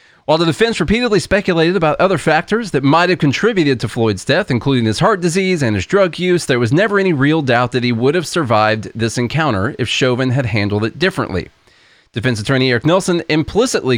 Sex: male